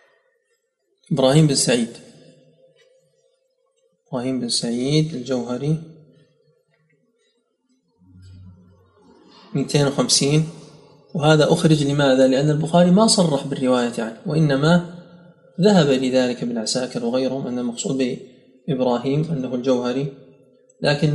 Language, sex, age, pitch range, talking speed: Arabic, male, 30-49, 130-165 Hz, 80 wpm